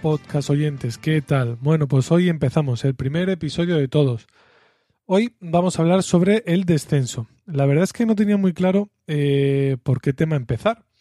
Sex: male